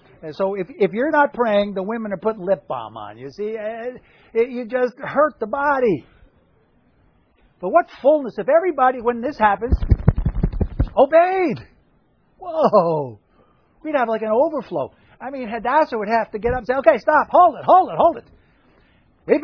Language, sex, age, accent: English, male, 50-69, American